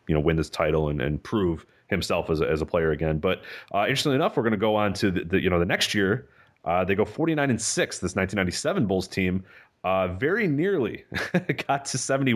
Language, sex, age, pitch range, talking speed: English, male, 30-49, 90-110 Hz, 235 wpm